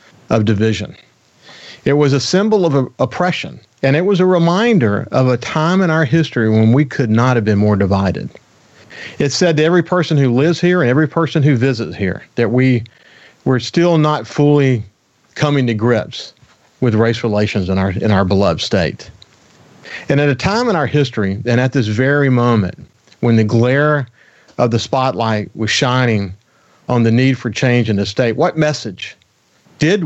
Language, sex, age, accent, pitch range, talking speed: English, male, 40-59, American, 110-150 Hz, 180 wpm